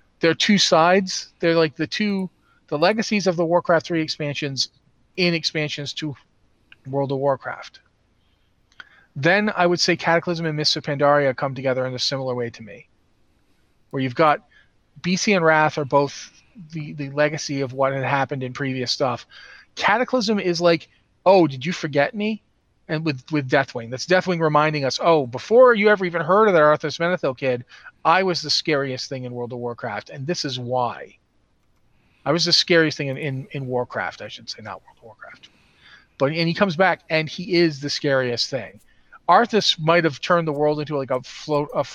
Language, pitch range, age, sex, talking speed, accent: English, 135-175 Hz, 40-59, male, 190 wpm, American